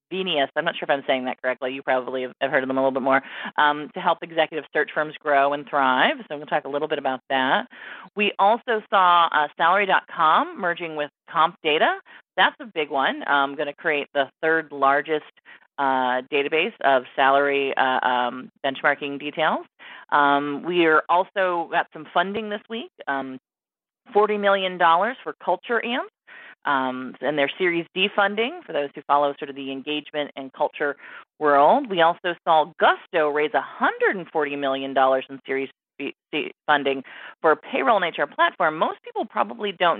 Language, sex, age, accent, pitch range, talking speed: English, female, 40-59, American, 140-180 Hz, 175 wpm